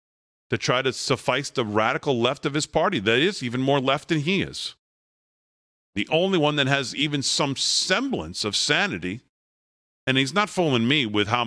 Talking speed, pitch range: 185 wpm, 120-150 Hz